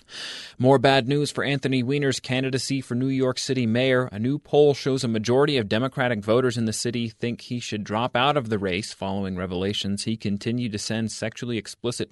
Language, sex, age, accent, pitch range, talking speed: English, male, 30-49, American, 105-130 Hz, 200 wpm